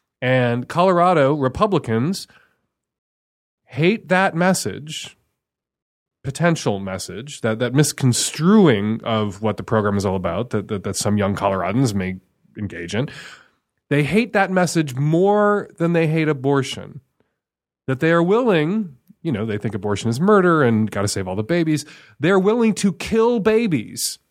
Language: English